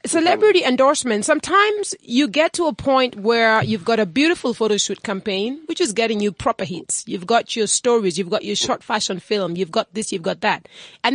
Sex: female